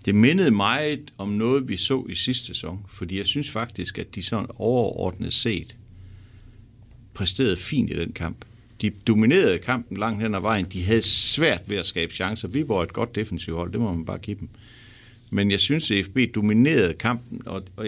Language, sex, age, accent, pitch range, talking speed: Danish, male, 60-79, native, 95-120 Hz, 190 wpm